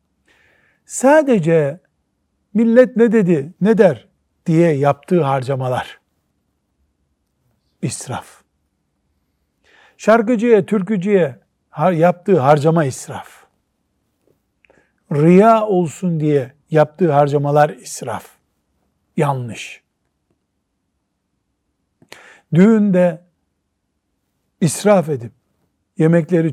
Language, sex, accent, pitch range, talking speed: Turkish, male, native, 140-195 Hz, 60 wpm